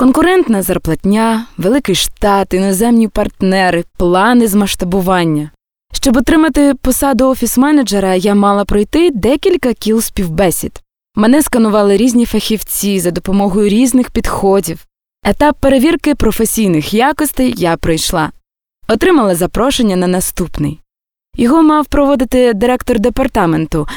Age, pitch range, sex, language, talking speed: 20-39, 185-255 Hz, female, Ukrainian, 105 wpm